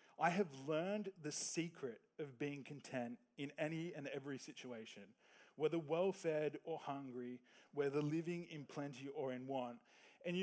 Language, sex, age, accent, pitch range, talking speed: English, male, 20-39, Australian, 135-170 Hz, 150 wpm